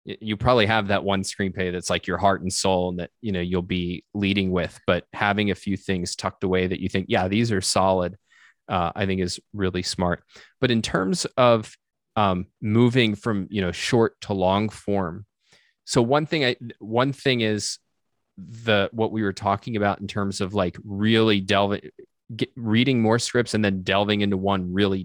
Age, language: 20-39, English